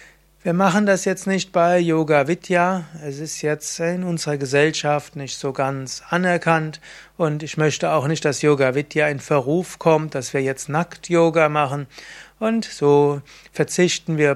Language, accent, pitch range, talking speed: German, German, 145-170 Hz, 160 wpm